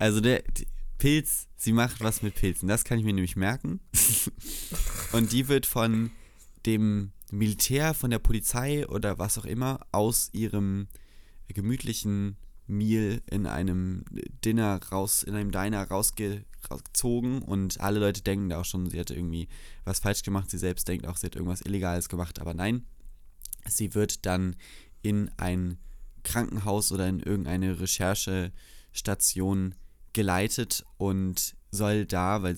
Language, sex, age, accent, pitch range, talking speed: German, male, 20-39, German, 90-105 Hz, 145 wpm